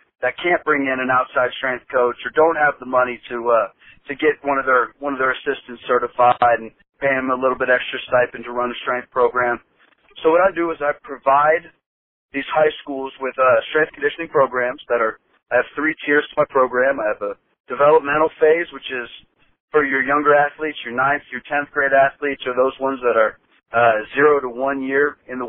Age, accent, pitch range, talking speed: 40-59, American, 125-155 Hz, 215 wpm